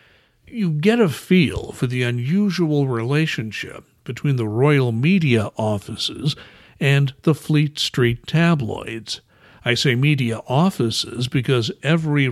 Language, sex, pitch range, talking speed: English, male, 120-160 Hz, 115 wpm